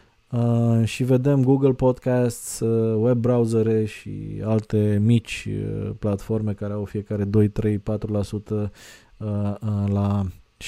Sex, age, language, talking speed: male, 20-39, Romanian, 80 wpm